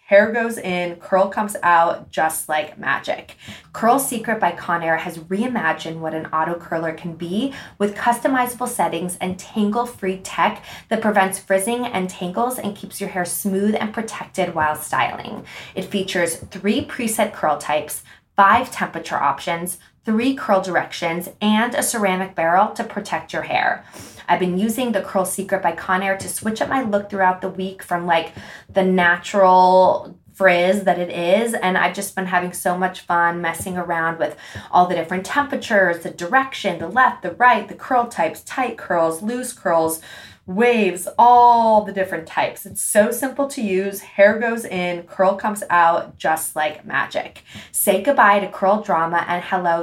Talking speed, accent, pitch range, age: 165 wpm, American, 170-215 Hz, 20-39